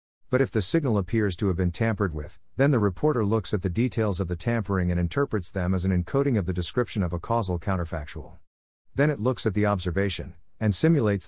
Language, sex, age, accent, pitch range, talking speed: English, male, 50-69, American, 90-110 Hz, 220 wpm